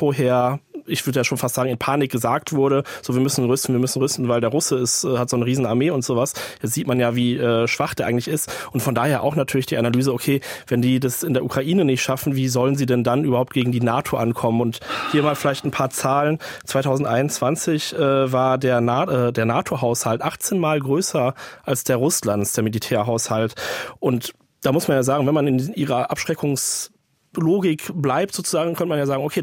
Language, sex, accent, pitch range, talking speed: German, male, German, 125-150 Hz, 205 wpm